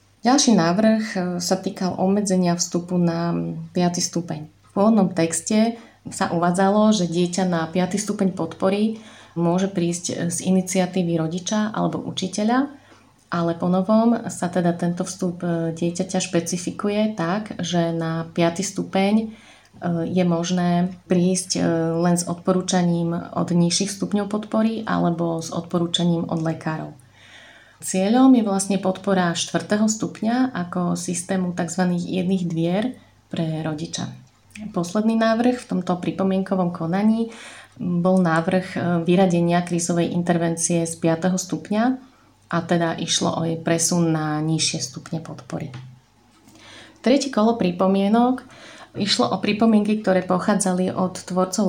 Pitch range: 170-200 Hz